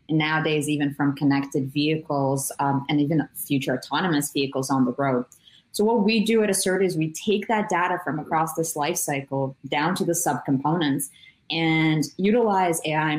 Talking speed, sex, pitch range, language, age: 170 wpm, female, 135-160 Hz, English, 20-39